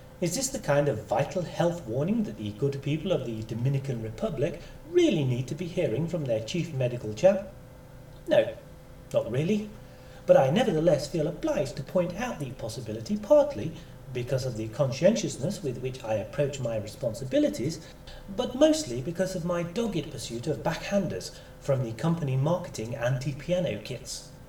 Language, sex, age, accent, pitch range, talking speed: English, male, 40-59, British, 130-190 Hz, 160 wpm